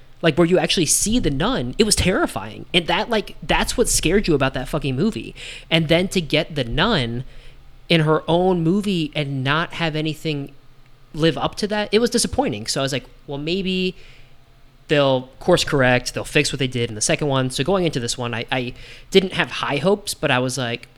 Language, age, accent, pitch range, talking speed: English, 20-39, American, 125-155 Hz, 215 wpm